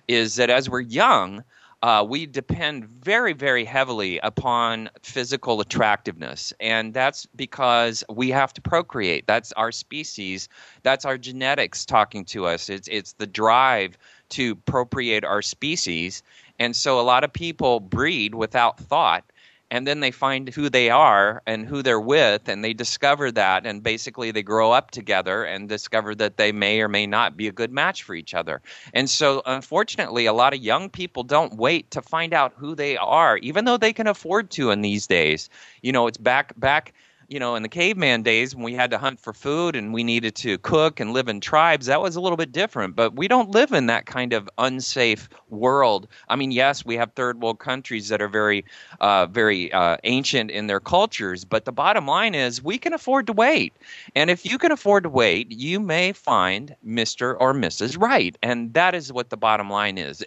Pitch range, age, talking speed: 110-140 Hz, 30-49, 200 wpm